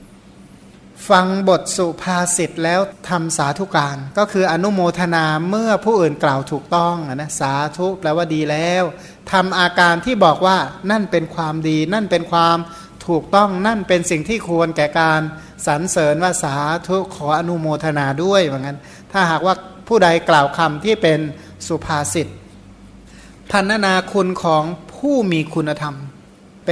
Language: Thai